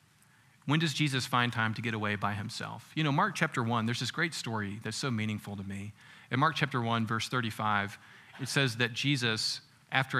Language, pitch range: English, 115-150 Hz